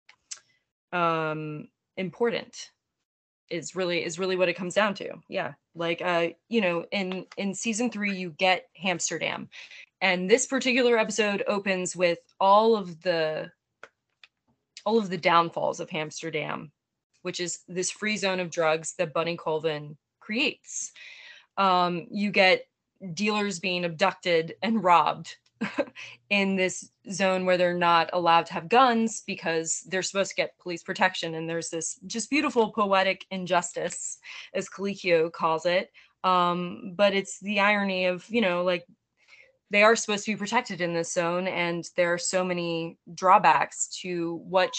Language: English